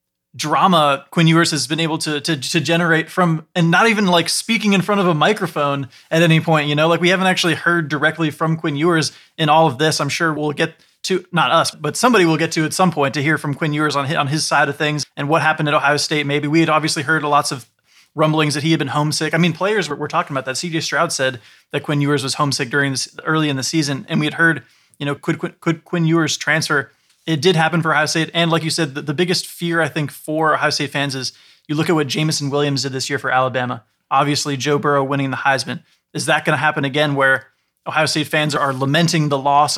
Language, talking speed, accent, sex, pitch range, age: English, 255 wpm, American, male, 145-165 Hz, 20-39